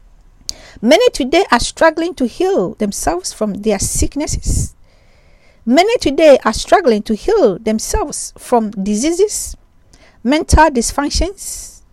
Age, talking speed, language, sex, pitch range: 50-69, 105 wpm, English, female, 220-310 Hz